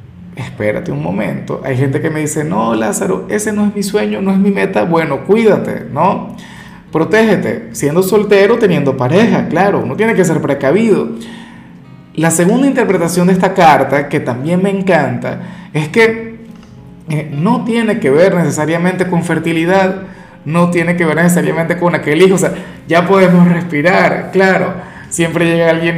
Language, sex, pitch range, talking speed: Spanish, male, 140-185 Hz, 160 wpm